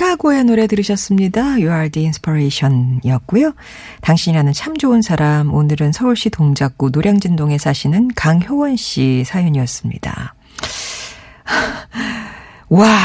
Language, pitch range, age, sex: Korean, 150-220 Hz, 40-59, female